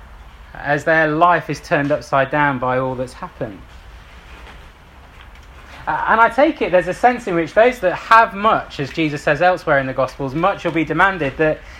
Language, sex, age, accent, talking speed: English, male, 30-49, British, 185 wpm